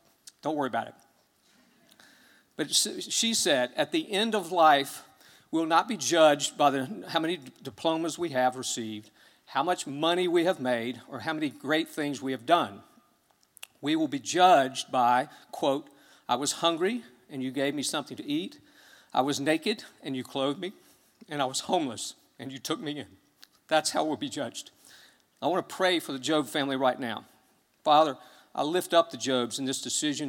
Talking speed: 185 wpm